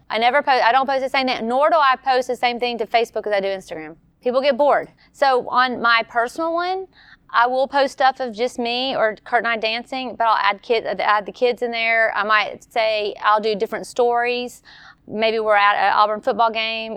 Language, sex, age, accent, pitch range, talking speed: English, female, 30-49, American, 210-250 Hz, 230 wpm